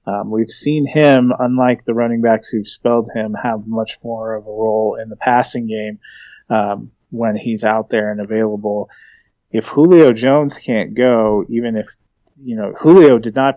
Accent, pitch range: American, 110-120 Hz